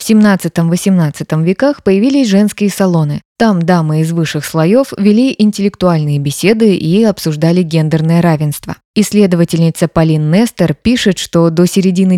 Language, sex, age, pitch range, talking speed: Russian, female, 20-39, 160-205 Hz, 130 wpm